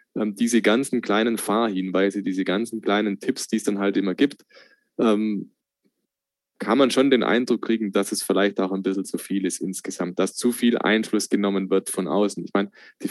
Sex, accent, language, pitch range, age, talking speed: male, German, German, 100-115 Hz, 20-39, 190 wpm